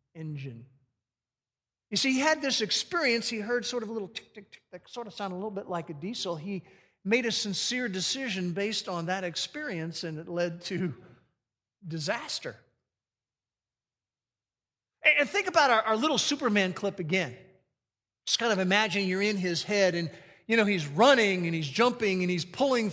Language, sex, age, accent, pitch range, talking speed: English, male, 50-69, American, 165-235 Hz, 180 wpm